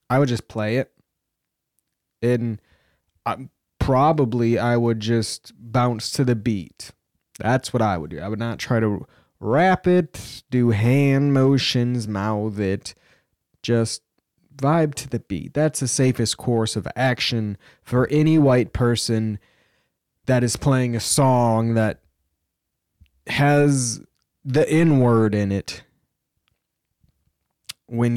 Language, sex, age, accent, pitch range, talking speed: English, male, 20-39, American, 105-130 Hz, 125 wpm